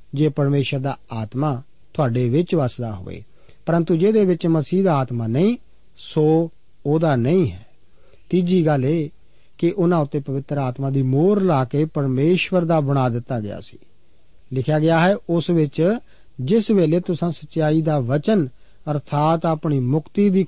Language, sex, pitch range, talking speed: Punjabi, male, 135-175 Hz, 150 wpm